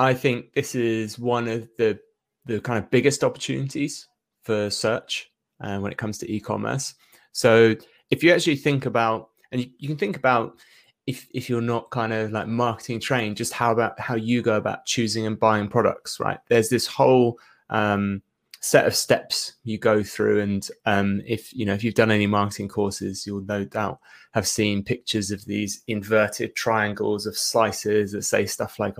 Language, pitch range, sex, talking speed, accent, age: English, 100-120 Hz, male, 185 wpm, British, 20-39